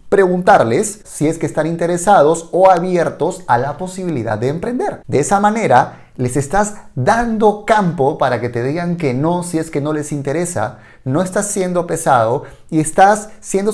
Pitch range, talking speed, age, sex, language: 140-185 Hz, 170 wpm, 30-49, male, Spanish